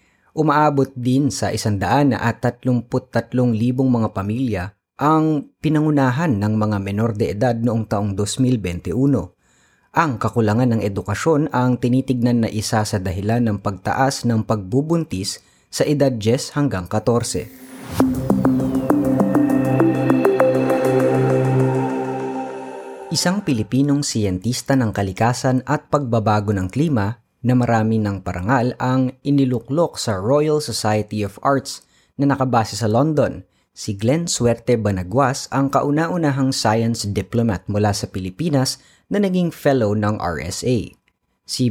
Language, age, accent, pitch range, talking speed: Filipino, 30-49, native, 105-135 Hz, 115 wpm